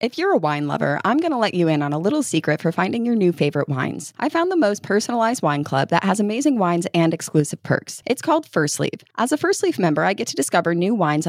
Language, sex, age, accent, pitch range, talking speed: English, female, 20-39, American, 160-225 Hz, 265 wpm